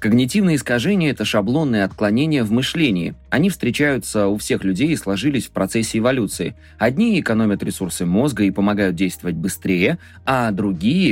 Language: Russian